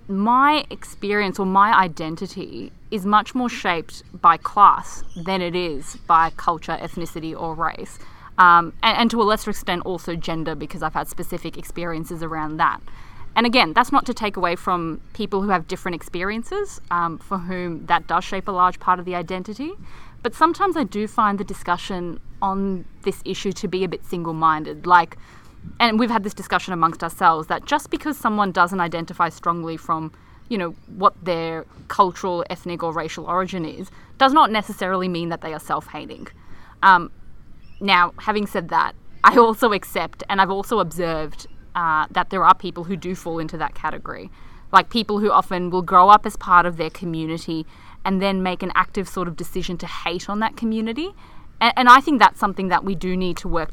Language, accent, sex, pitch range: English, Australian, female, 170-205 Hz